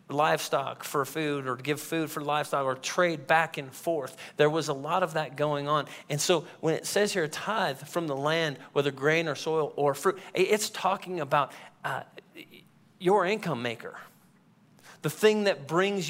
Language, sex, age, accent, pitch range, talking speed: English, male, 40-59, American, 140-175 Hz, 185 wpm